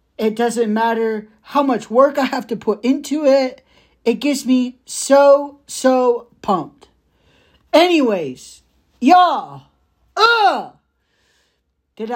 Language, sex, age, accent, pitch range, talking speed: English, male, 40-59, American, 150-230 Hz, 105 wpm